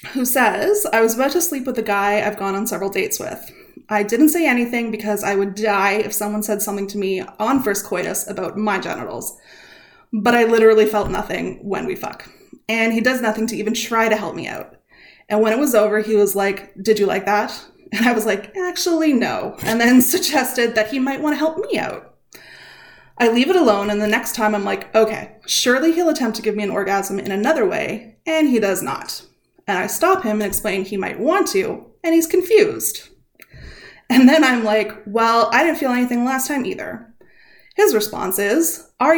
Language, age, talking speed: English, 20-39, 215 wpm